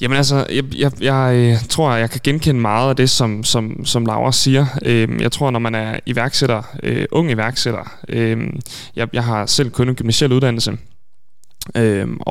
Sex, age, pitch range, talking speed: male, 20-39, 115-135 Hz, 170 wpm